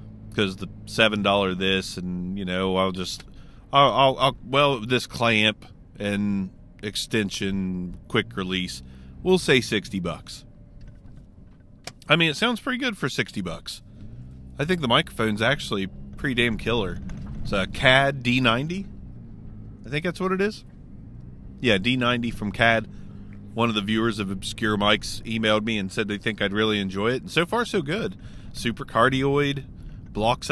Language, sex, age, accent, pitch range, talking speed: English, male, 30-49, American, 100-150 Hz, 155 wpm